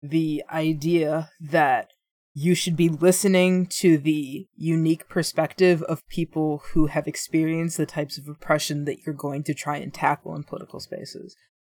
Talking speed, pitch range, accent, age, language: 155 wpm, 150-180 Hz, American, 20-39, English